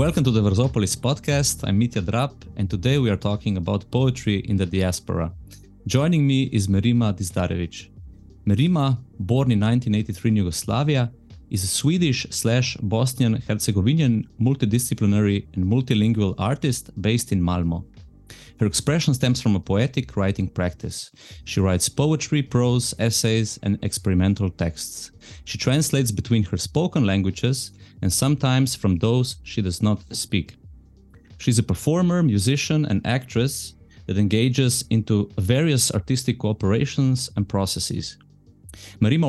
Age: 30-49